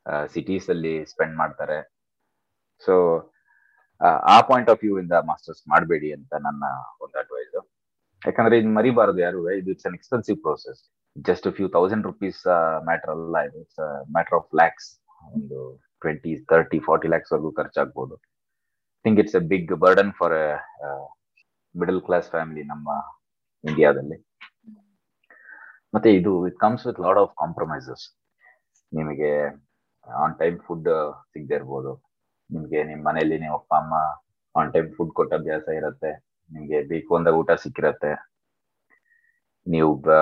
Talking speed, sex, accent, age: 120 wpm, male, Indian, 30-49